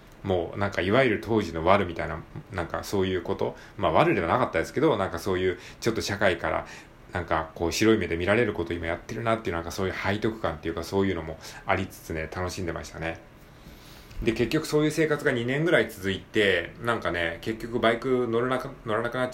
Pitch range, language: 85-120 Hz, Japanese